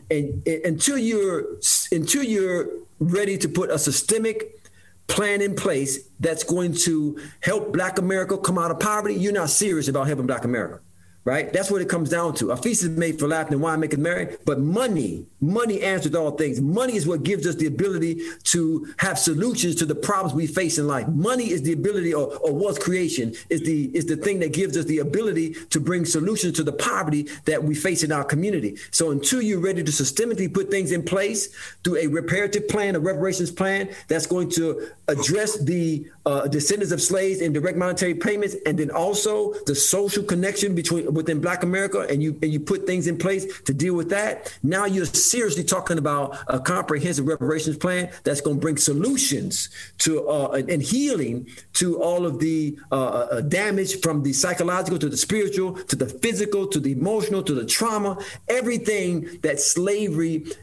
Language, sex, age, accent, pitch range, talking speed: English, male, 50-69, American, 150-195 Hz, 195 wpm